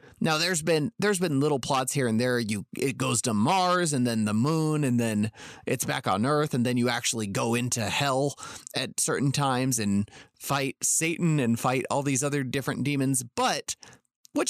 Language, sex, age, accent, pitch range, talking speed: English, male, 30-49, American, 115-150 Hz, 195 wpm